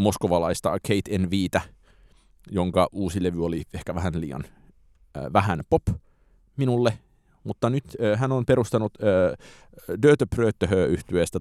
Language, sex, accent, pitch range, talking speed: Finnish, male, native, 80-105 Hz, 115 wpm